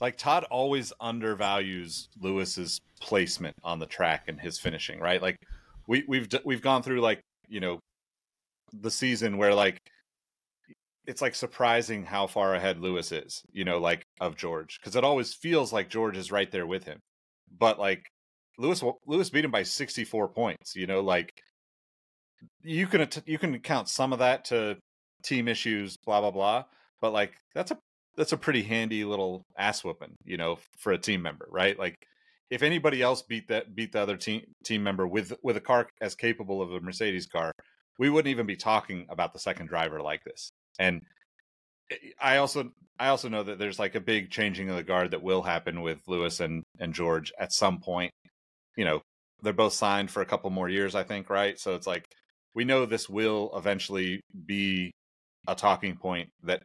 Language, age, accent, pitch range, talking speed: English, 30-49, American, 90-120 Hz, 190 wpm